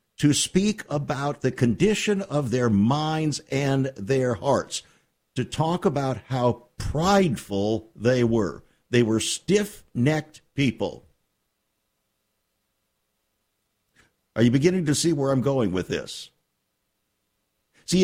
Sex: male